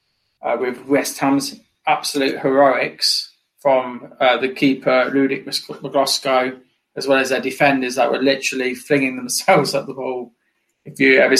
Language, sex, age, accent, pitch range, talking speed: English, male, 20-39, British, 130-150 Hz, 145 wpm